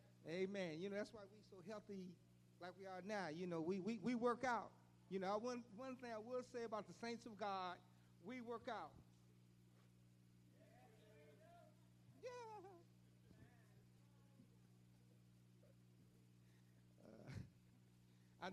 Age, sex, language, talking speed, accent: 50-69, male, English, 125 wpm, American